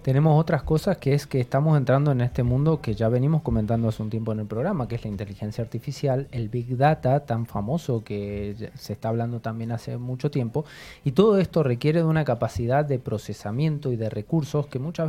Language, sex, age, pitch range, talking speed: Spanish, male, 20-39, 115-150 Hz, 210 wpm